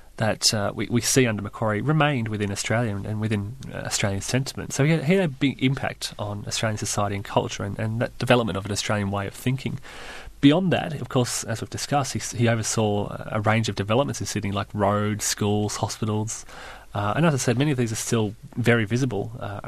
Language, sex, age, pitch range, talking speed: English, male, 30-49, 105-130 Hz, 215 wpm